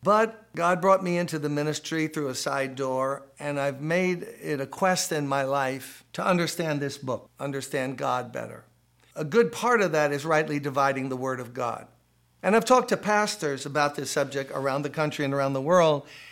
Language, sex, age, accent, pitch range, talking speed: English, male, 60-79, American, 130-170 Hz, 200 wpm